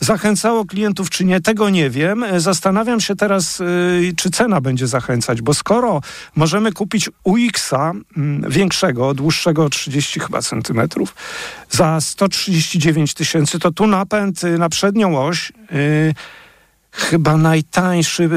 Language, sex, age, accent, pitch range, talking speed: Polish, male, 50-69, native, 155-195 Hz, 130 wpm